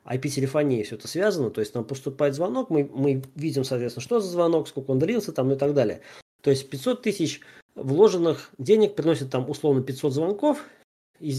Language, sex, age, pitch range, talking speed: Russian, male, 20-39, 130-170 Hz, 190 wpm